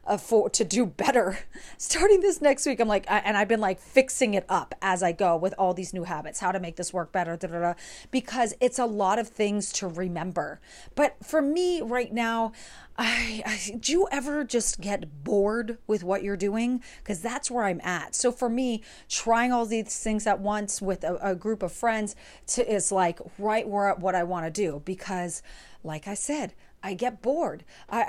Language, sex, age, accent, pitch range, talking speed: English, female, 30-49, American, 185-235 Hz, 210 wpm